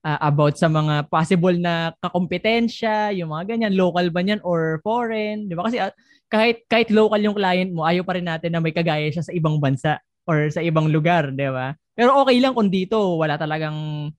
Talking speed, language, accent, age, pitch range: 205 wpm, Filipino, native, 20-39, 155-205 Hz